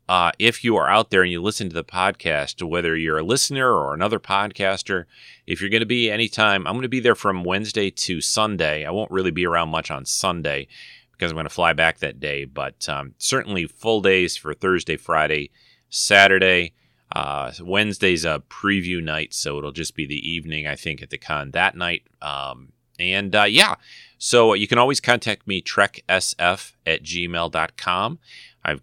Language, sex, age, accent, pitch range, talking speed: English, male, 30-49, American, 80-105 Hz, 190 wpm